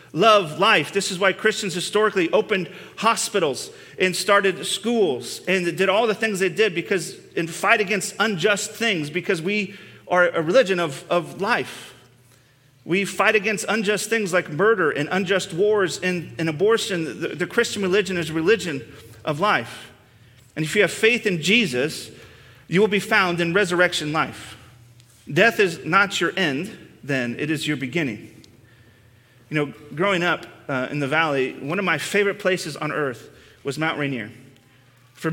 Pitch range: 150-200 Hz